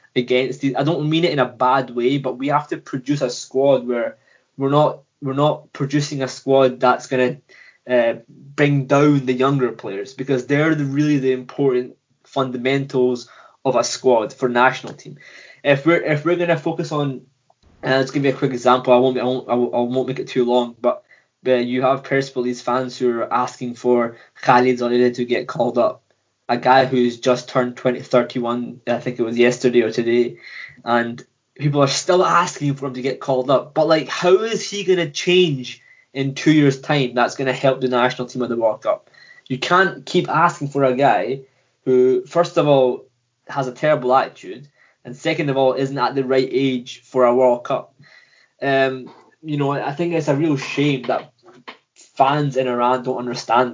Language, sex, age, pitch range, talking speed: English, male, 20-39, 125-140 Hz, 195 wpm